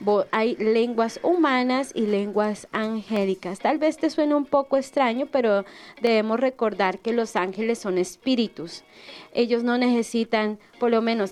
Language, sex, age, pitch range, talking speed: Spanish, female, 30-49, 205-255 Hz, 145 wpm